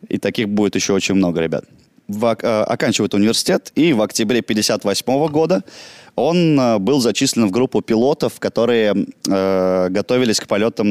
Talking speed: 155 wpm